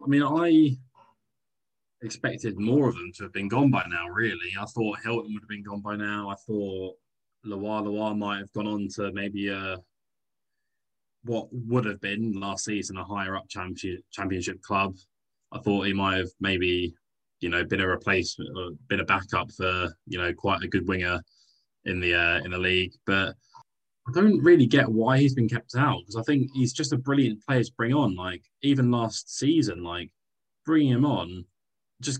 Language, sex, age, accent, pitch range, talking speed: English, male, 20-39, British, 95-125 Hz, 195 wpm